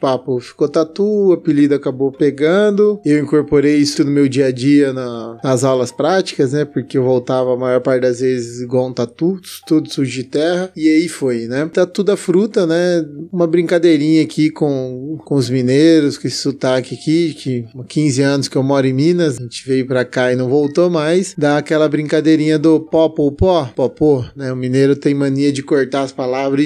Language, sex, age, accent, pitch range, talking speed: Portuguese, male, 20-39, Brazilian, 130-155 Hz, 200 wpm